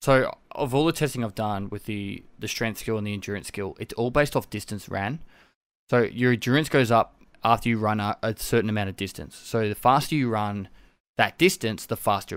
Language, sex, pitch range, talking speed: English, male, 105-130 Hz, 220 wpm